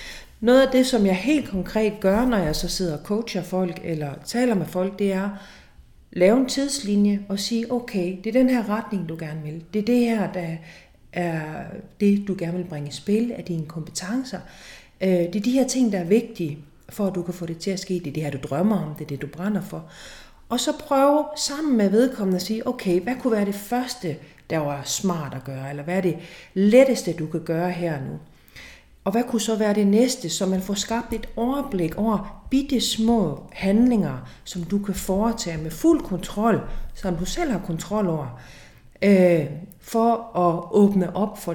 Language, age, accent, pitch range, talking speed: Danish, 40-59, native, 170-225 Hz, 210 wpm